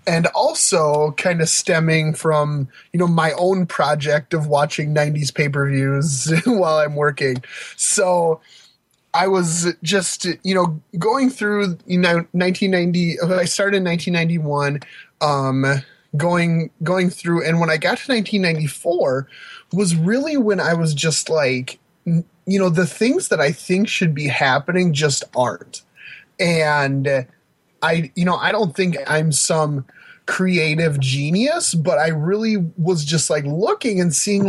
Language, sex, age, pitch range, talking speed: English, male, 20-39, 145-175 Hz, 145 wpm